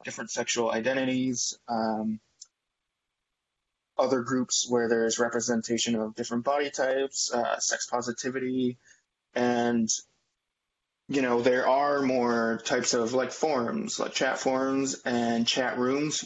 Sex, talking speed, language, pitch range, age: male, 120 wpm, English, 115-130 Hz, 20-39